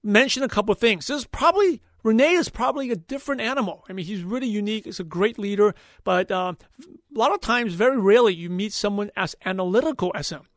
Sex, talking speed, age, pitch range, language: male, 215 wpm, 30-49, 185-230 Hz, English